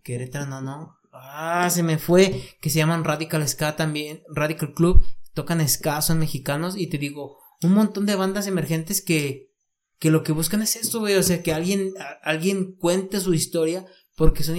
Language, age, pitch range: Spanish, 30-49, 150-185 Hz